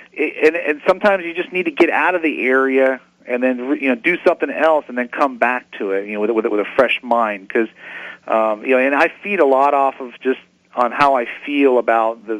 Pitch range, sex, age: 110-135 Hz, male, 40-59